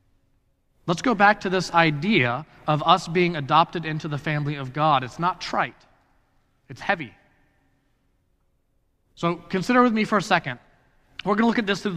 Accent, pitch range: American, 130-170 Hz